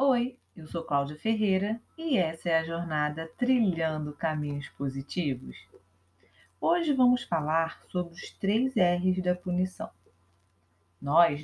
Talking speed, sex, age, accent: 120 wpm, female, 30-49, Brazilian